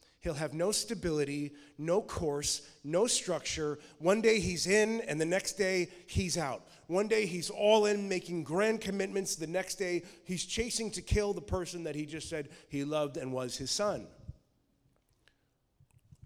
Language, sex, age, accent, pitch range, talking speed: English, male, 30-49, American, 140-195 Hz, 165 wpm